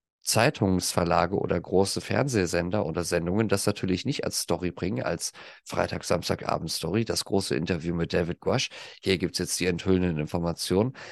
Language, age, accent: German, 40-59, German